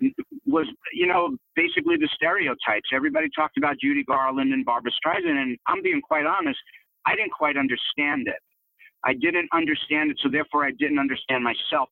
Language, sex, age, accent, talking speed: English, male, 50-69, American, 170 wpm